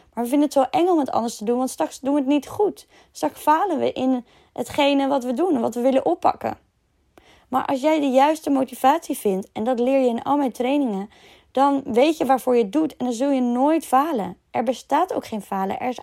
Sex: female